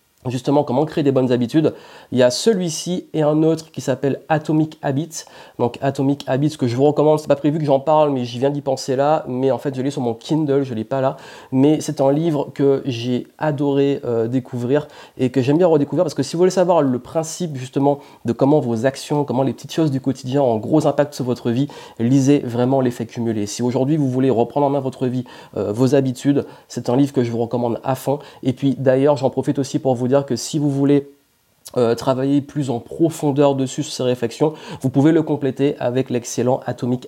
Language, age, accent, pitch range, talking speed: French, 30-49, French, 120-145 Hz, 230 wpm